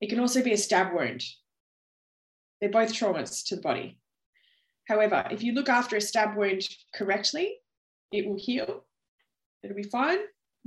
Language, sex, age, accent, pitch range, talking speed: English, female, 20-39, Australian, 190-245 Hz, 155 wpm